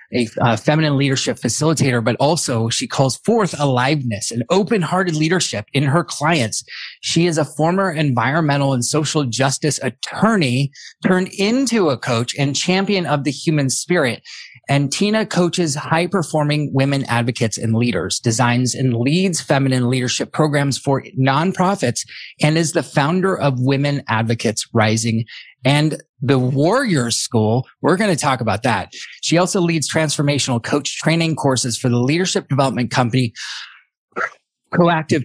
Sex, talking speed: male, 140 wpm